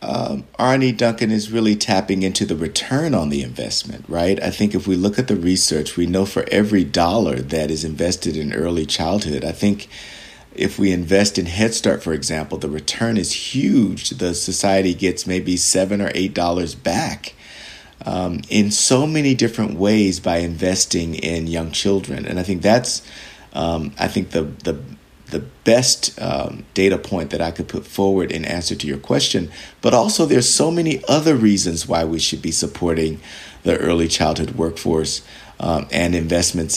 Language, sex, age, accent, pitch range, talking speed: English, male, 50-69, American, 80-105 Hz, 180 wpm